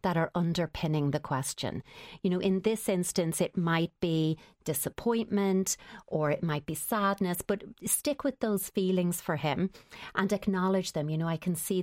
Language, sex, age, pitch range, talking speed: English, female, 30-49, 160-195 Hz, 170 wpm